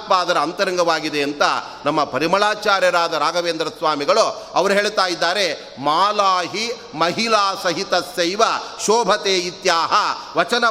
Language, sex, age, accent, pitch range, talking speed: Kannada, male, 30-49, native, 175-210 Hz, 90 wpm